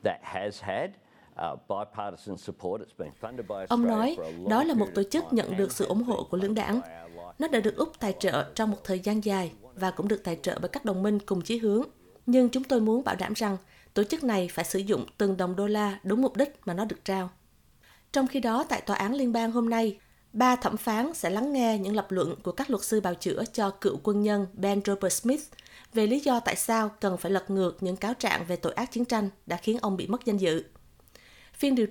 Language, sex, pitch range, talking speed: Vietnamese, female, 195-235 Hz, 225 wpm